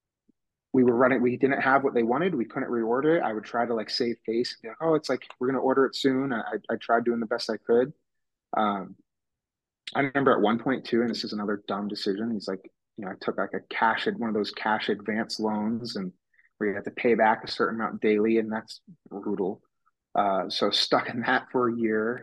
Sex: male